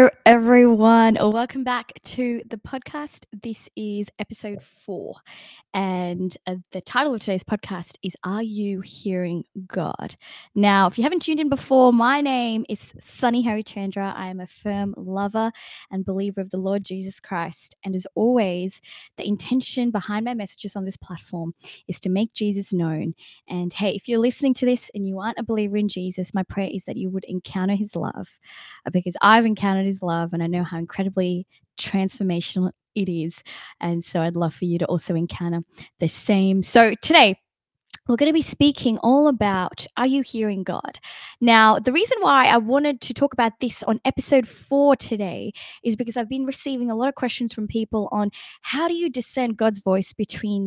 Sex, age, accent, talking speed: female, 20-39, Australian, 185 wpm